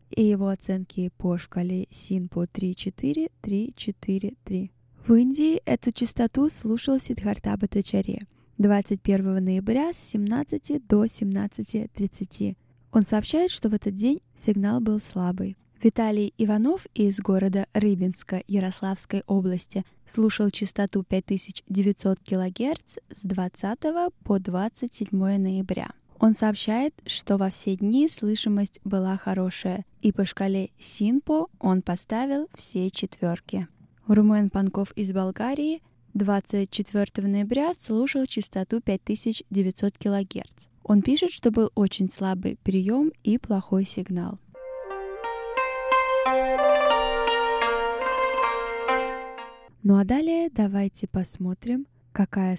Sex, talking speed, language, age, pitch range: female, 105 wpm, Russian, 10-29, 190-235 Hz